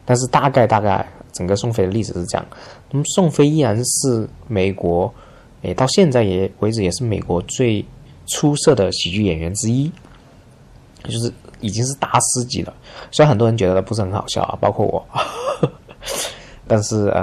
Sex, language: male, Chinese